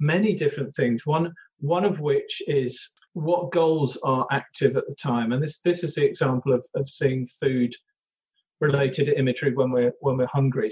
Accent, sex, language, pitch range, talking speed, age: British, male, English, 135-165 Hz, 175 wpm, 40-59